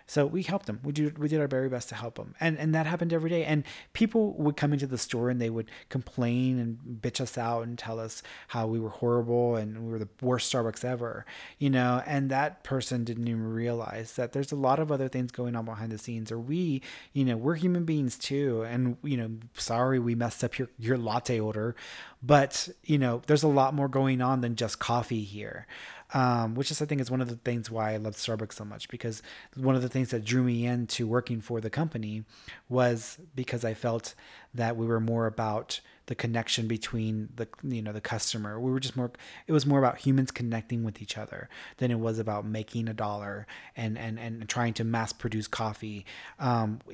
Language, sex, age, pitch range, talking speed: English, male, 30-49, 115-135 Hz, 225 wpm